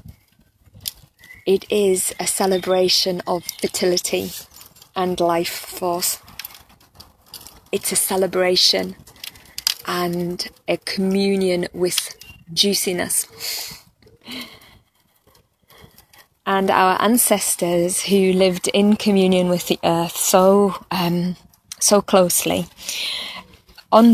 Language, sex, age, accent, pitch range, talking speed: English, female, 20-39, British, 180-210 Hz, 80 wpm